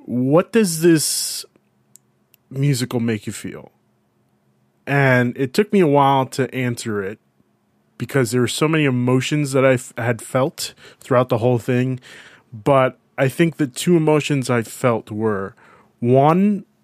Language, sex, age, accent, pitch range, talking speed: English, male, 20-39, American, 115-150 Hz, 145 wpm